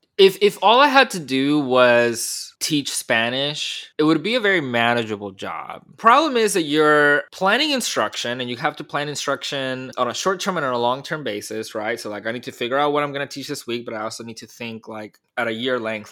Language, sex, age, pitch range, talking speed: English, male, 20-39, 115-140 Hz, 240 wpm